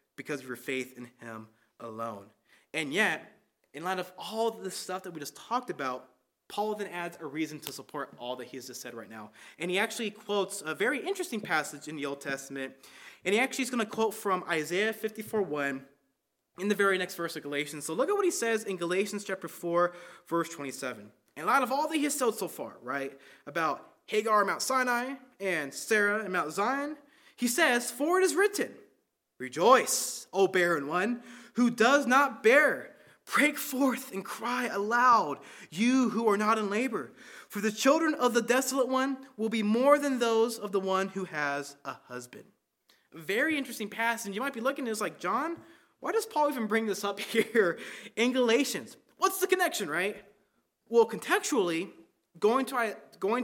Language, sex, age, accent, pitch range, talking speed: English, male, 20-39, American, 165-250 Hz, 190 wpm